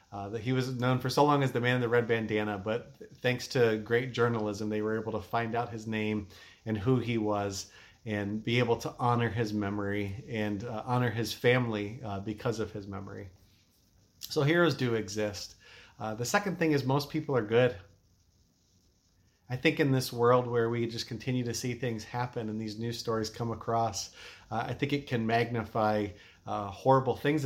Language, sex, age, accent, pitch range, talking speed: English, male, 30-49, American, 105-125 Hz, 195 wpm